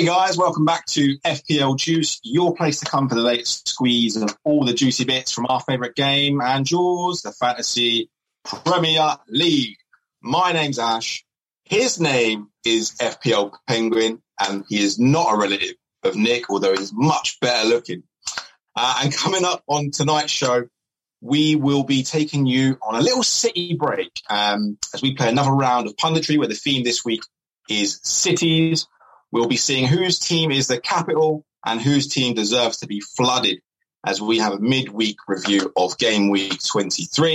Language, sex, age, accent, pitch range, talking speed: English, male, 30-49, British, 115-160 Hz, 175 wpm